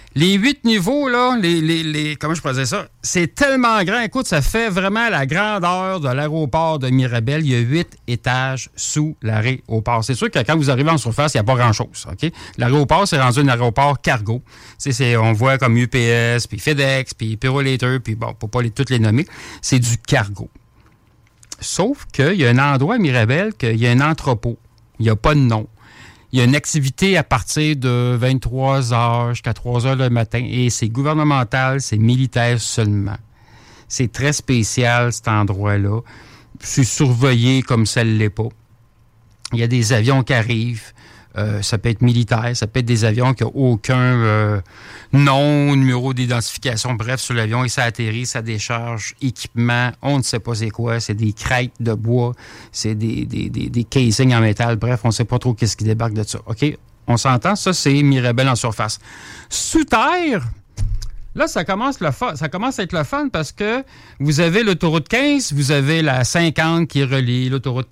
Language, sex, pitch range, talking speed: French, male, 115-145 Hz, 195 wpm